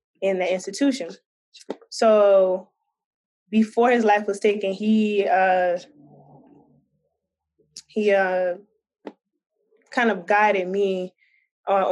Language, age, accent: English, 20-39, American